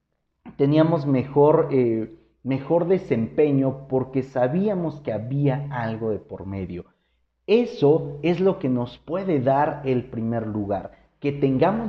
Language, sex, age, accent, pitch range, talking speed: Spanish, male, 40-59, Mexican, 105-145 Hz, 120 wpm